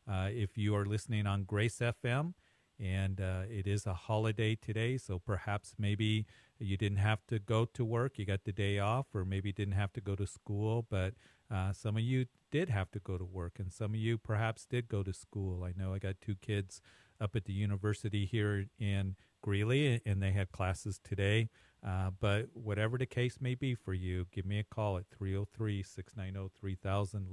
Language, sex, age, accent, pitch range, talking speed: English, male, 40-59, American, 100-110 Hz, 200 wpm